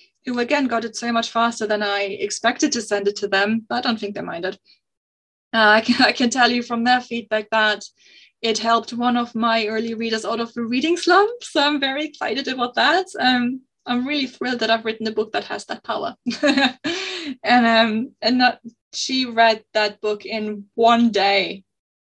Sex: female